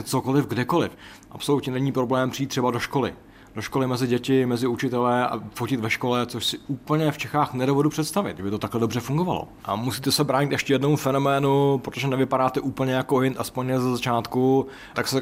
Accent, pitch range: native, 120-140 Hz